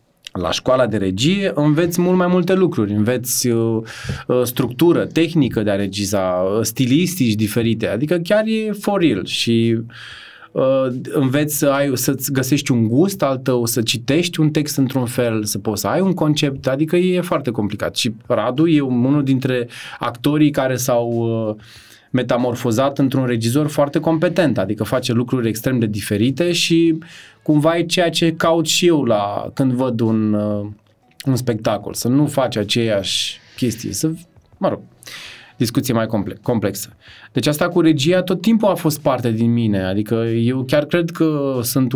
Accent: native